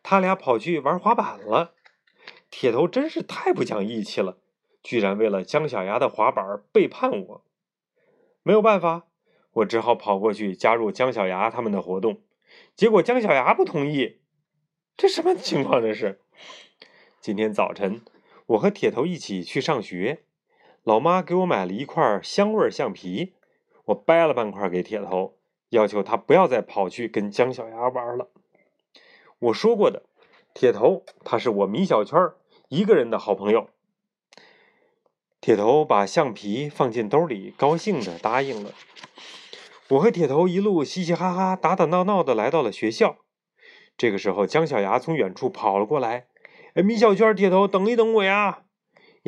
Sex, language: male, Chinese